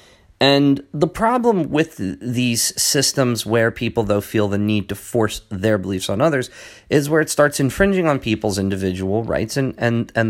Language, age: English, 40-59